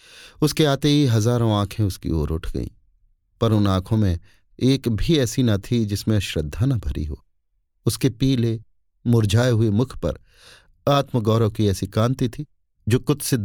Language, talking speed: Hindi, 160 wpm